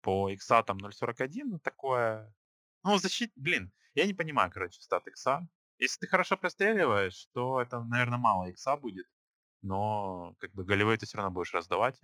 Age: 20-39